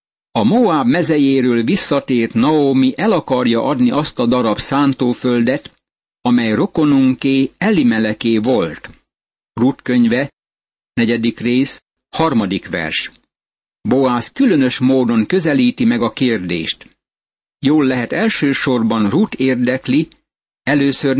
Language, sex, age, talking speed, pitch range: Hungarian, male, 60-79, 100 wpm, 120-150 Hz